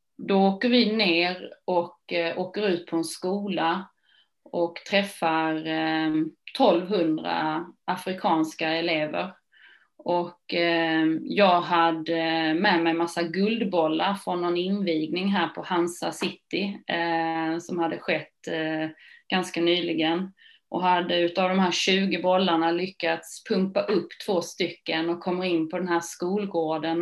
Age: 30-49